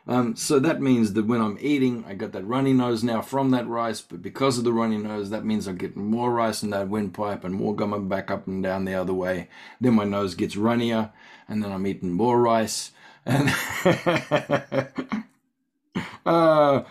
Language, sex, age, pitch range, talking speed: English, male, 40-59, 90-125 Hz, 195 wpm